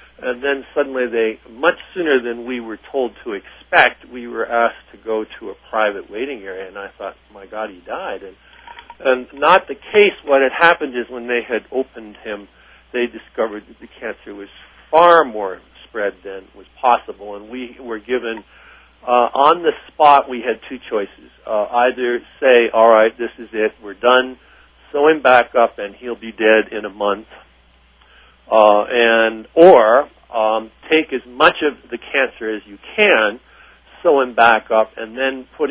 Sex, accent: male, American